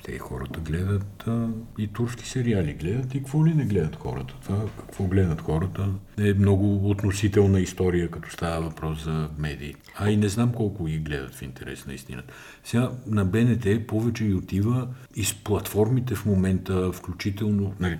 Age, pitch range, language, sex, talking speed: 50-69, 80-105 Hz, Bulgarian, male, 170 wpm